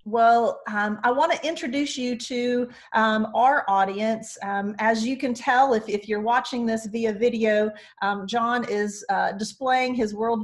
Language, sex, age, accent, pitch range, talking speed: English, female, 40-59, American, 200-235 Hz, 170 wpm